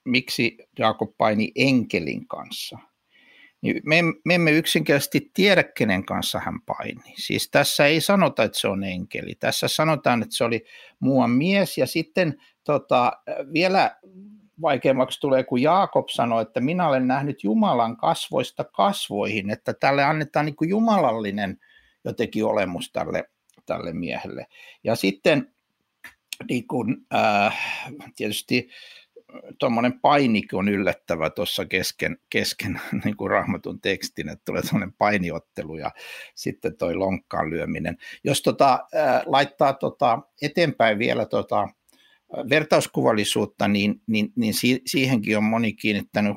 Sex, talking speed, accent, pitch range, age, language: male, 125 wpm, native, 110-165 Hz, 60-79, Finnish